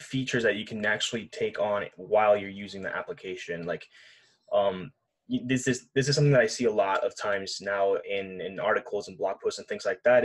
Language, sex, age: English, male, 10-29